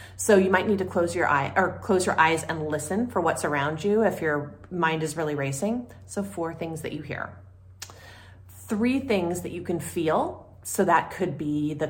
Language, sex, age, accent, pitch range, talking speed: English, female, 30-49, American, 145-195 Hz, 205 wpm